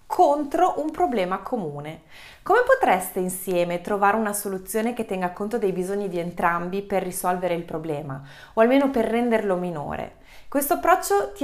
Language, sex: Italian, female